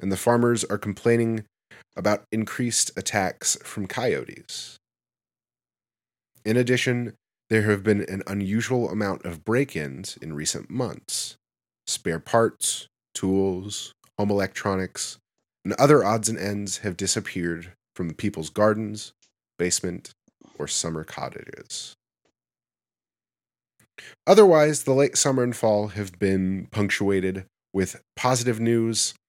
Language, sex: English, male